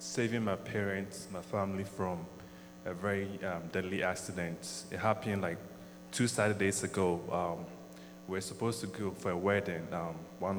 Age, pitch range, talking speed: 20-39, 85-115 Hz, 160 wpm